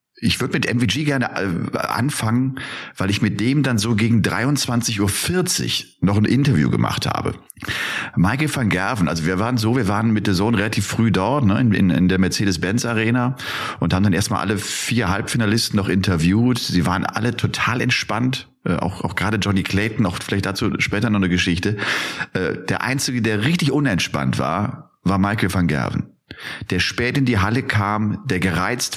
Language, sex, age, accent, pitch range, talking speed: German, male, 40-59, German, 100-130 Hz, 175 wpm